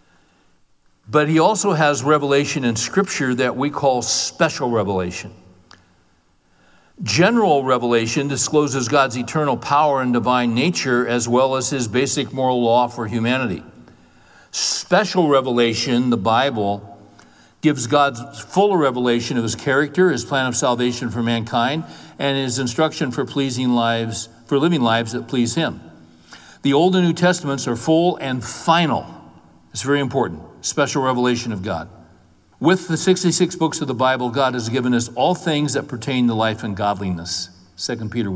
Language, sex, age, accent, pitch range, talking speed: English, male, 60-79, American, 110-145 Hz, 150 wpm